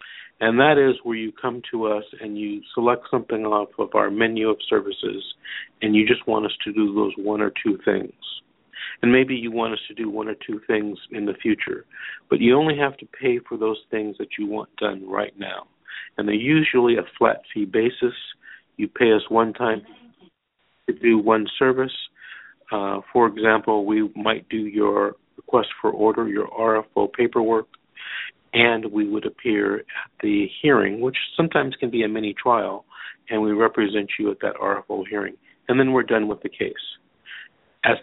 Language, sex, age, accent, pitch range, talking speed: English, male, 50-69, American, 105-140 Hz, 185 wpm